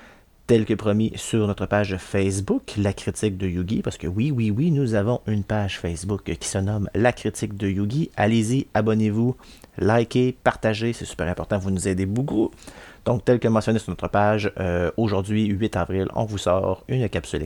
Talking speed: 190 wpm